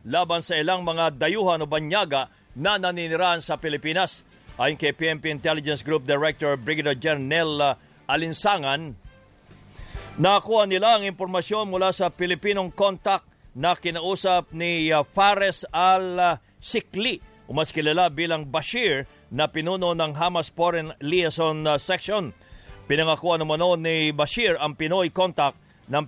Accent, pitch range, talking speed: Filipino, 150-180 Hz, 120 wpm